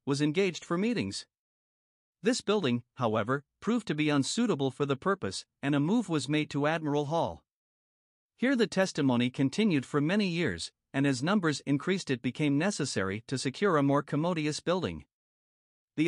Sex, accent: male, American